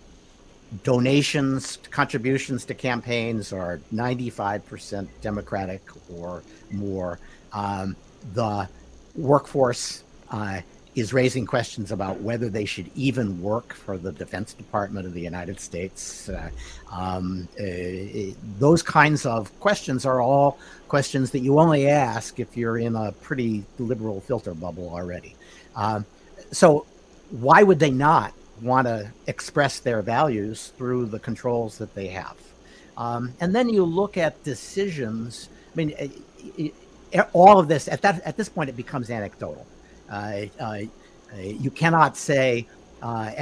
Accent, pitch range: American, 105-155 Hz